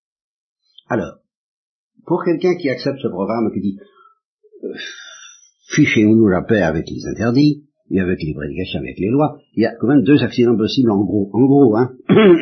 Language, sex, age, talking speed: French, male, 60-79, 175 wpm